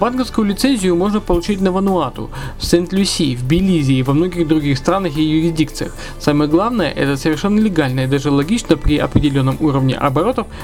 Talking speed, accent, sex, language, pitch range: 165 wpm, native, male, Russian, 135-170 Hz